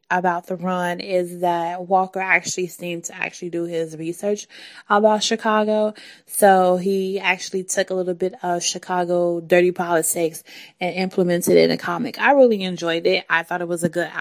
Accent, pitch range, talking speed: American, 175-210 Hz, 175 wpm